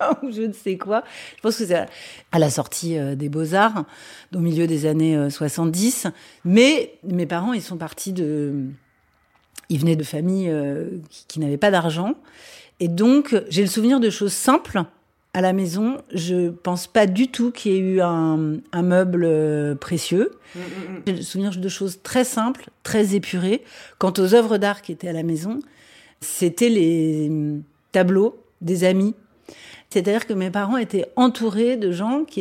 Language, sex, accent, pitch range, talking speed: French, female, French, 175-225 Hz, 170 wpm